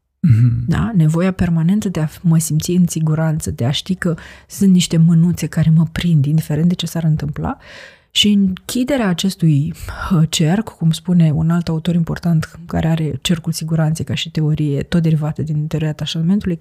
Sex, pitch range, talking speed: female, 155-190 Hz, 165 wpm